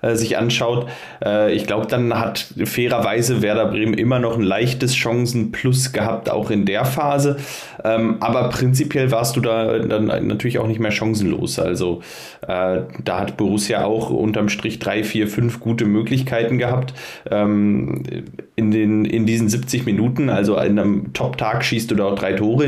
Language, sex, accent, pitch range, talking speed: German, male, German, 100-120 Hz, 155 wpm